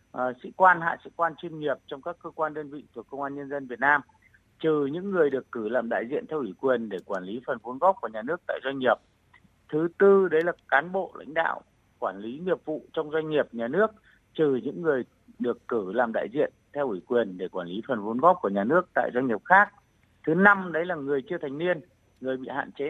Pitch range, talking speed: 135-175 Hz, 250 wpm